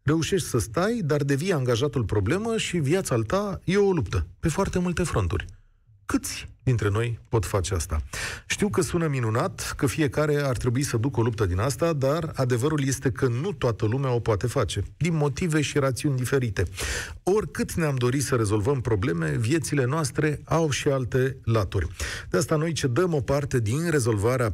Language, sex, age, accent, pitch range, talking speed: Romanian, male, 40-59, native, 110-160 Hz, 180 wpm